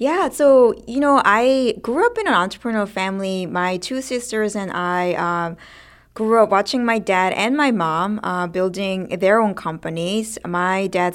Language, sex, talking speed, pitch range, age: English, female, 170 wpm, 170-205 Hz, 20-39